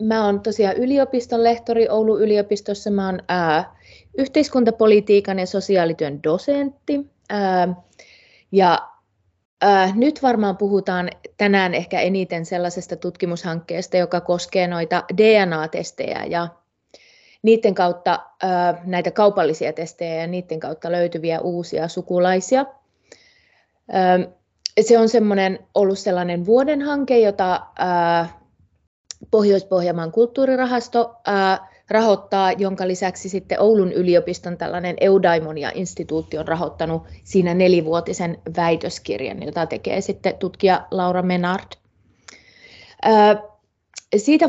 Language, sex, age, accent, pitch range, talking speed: Finnish, female, 30-49, native, 175-215 Hz, 105 wpm